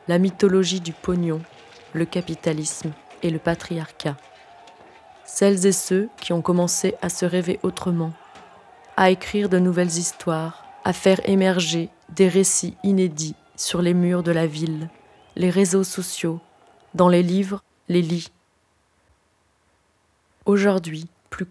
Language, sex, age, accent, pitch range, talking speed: French, female, 20-39, French, 170-200 Hz, 130 wpm